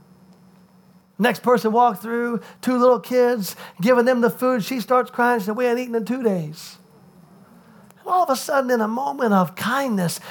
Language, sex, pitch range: English, male, 235-315 Hz